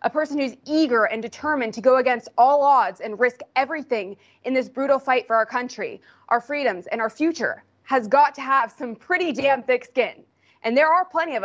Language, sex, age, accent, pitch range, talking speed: English, female, 20-39, American, 235-300 Hz, 210 wpm